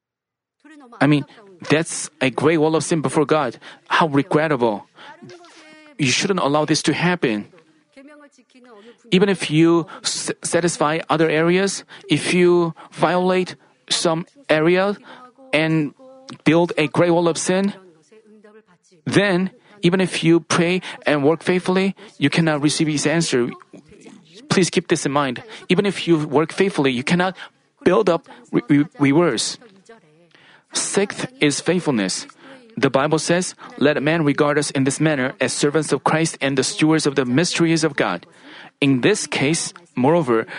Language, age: Korean, 30-49